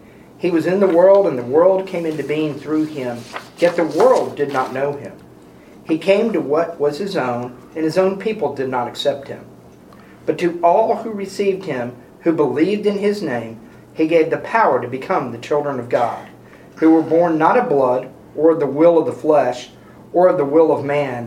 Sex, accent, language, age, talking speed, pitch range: male, American, English, 40-59, 210 wpm, 140-180 Hz